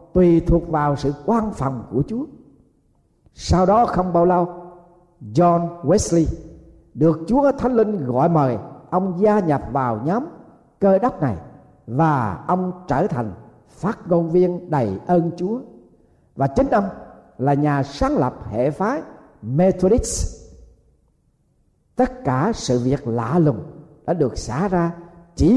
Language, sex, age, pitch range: Thai, male, 50-69, 135-190 Hz